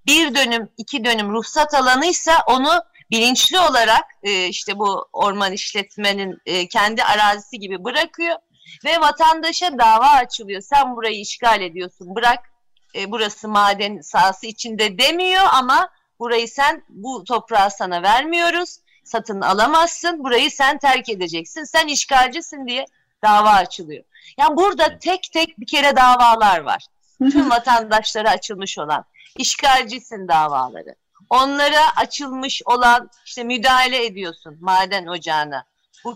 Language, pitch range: Turkish, 210-285 Hz